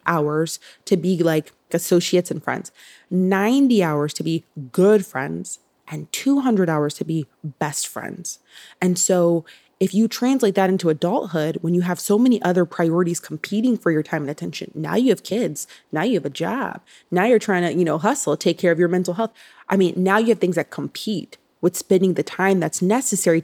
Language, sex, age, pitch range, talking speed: English, female, 20-39, 165-205 Hz, 195 wpm